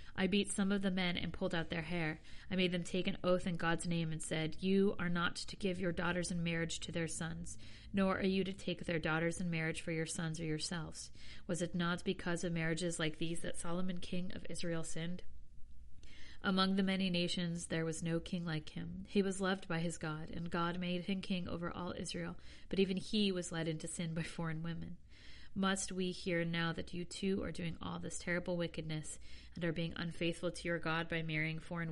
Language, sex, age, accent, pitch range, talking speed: English, female, 40-59, American, 165-185 Hz, 225 wpm